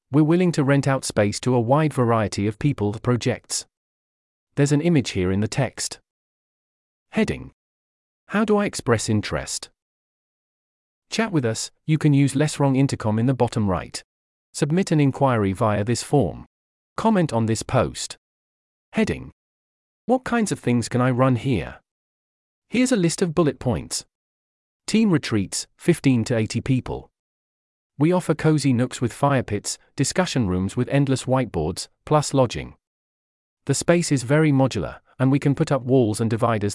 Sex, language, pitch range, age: male, English, 100-145 Hz, 40-59